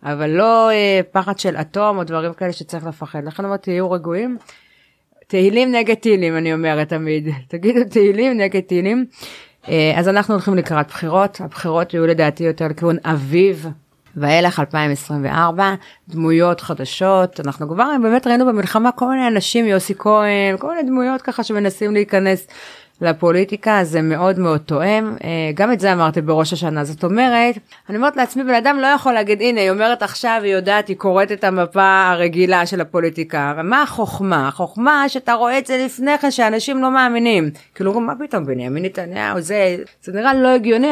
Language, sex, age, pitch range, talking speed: Hebrew, female, 30-49, 165-220 Hz, 165 wpm